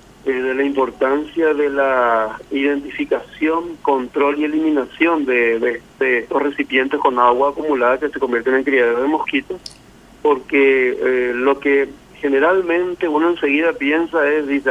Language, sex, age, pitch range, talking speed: Spanish, male, 40-59, 130-150 Hz, 130 wpm